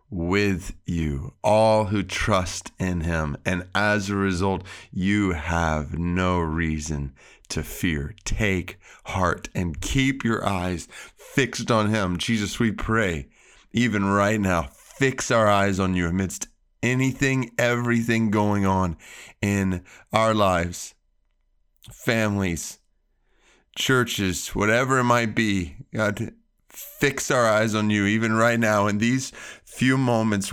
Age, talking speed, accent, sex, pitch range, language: 30-49, 125 wpm, American, male, 95-120 Hz, English